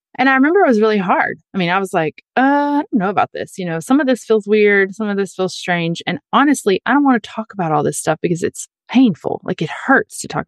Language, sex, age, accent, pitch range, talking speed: English, female, 30-49, American, 185-235 Hz, 280 wpm